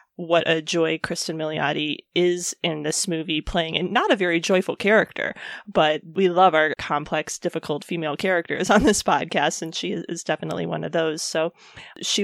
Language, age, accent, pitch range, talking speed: English, 20-39, American, 165-195 Hz, 175 wpm